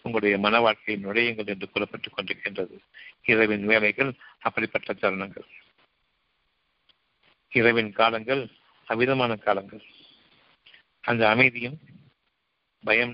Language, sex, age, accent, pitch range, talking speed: Tamil, male, 60-79, native, 105-120 Hz, 80 wpm